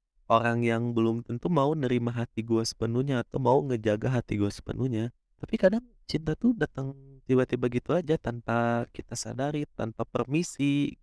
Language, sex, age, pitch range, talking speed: Indonesian, male, 20-39, 100-125 Hz, 150 wpm